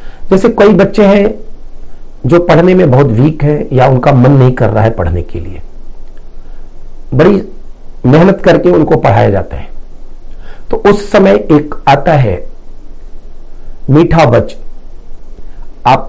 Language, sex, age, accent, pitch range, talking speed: Hindi, male, 60-79, native, 105-165 Hz, 135 wpm